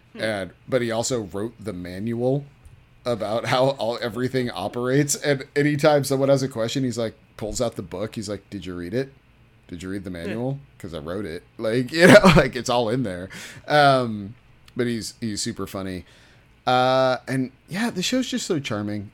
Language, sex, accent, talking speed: English, male, American, 185 wpm